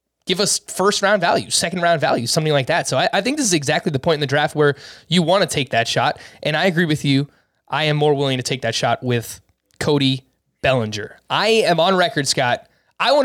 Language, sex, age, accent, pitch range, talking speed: English, male, 20-39, American, 135-175 Hz, 230 wpm